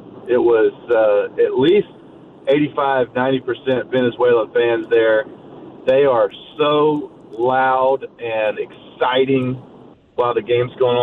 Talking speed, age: 110 wpm, 40-59